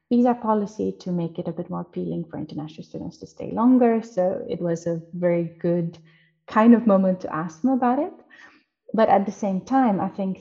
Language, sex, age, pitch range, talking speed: English, female, 30-49, 170-225 Hz, 210 wpm